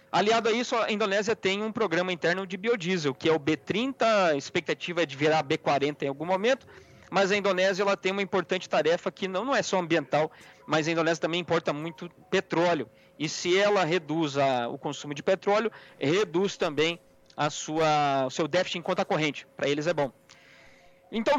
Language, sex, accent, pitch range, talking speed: Portuguese, male, Brazilian, 155-215 Hz, 195 wpm